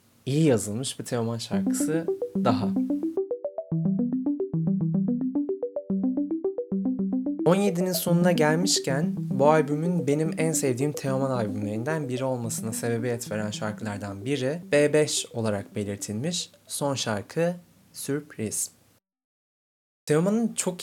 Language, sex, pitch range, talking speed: Turkish, male, 115-175 Hz, 85 wpm